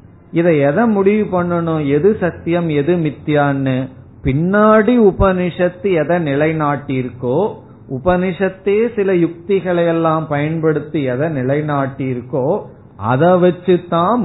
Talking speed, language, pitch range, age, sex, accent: 90 wpm, Tamil, 125-170 Hz, 50-69, male, native